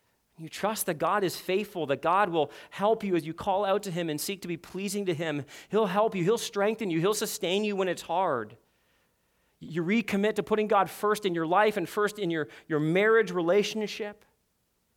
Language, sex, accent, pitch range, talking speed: English, male, American, 185-245 Hz, 210 wpm